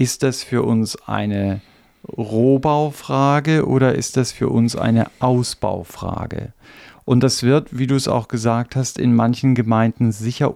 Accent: German